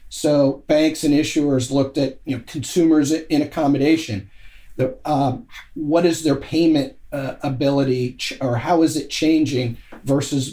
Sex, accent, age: male, American, 40-59